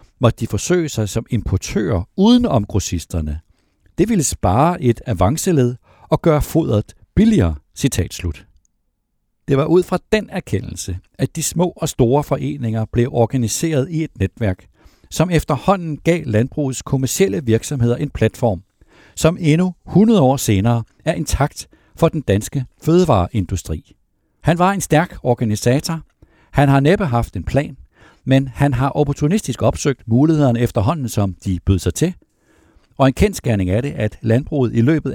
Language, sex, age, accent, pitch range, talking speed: Danish, male, 60-79, native, 105-150 Hz, 145 wpm